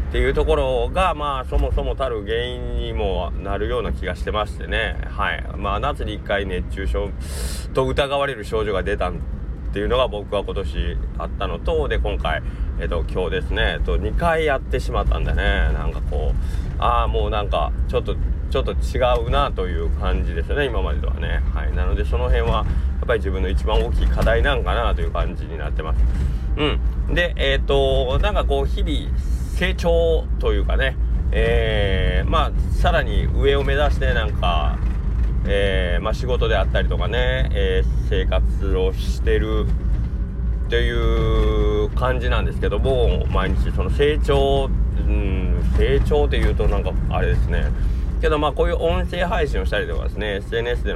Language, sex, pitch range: Japanese, male, 65-90 Hz